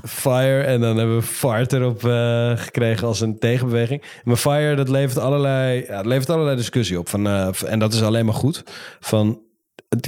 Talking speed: 190 wpm